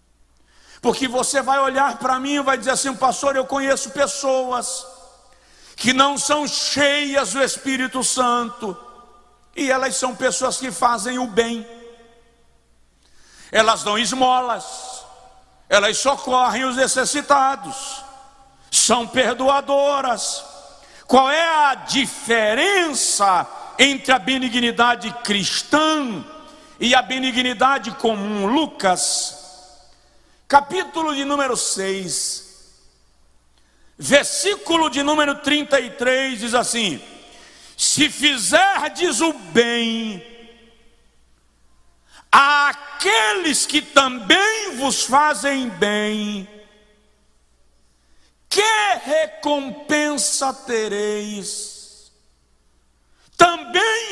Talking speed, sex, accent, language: 85 wpm, male, Brazilian, Portuguese